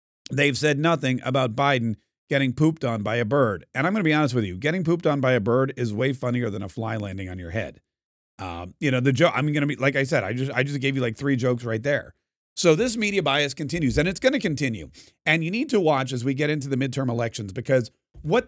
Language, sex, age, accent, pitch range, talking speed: English, male, 40-59, American, 130-170 Hz, 265 wpm